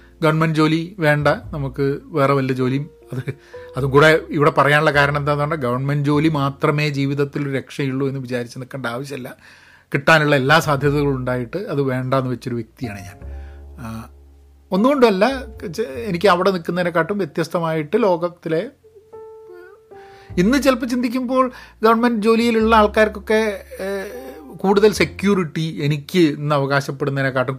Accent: native